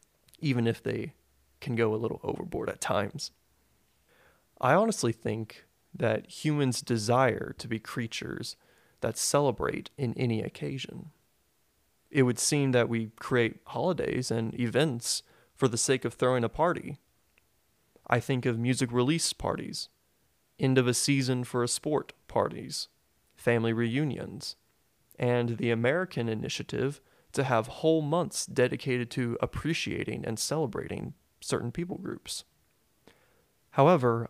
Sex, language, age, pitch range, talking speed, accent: male, English, 30-49, 115-140 Hz, 130 wpm, American